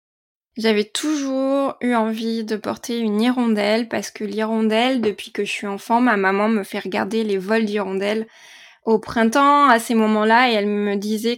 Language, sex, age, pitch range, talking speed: French, female, 20-39, 210-235 Hz, 175 wpm